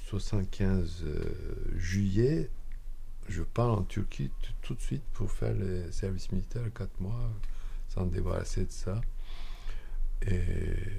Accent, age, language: French, 50-69, French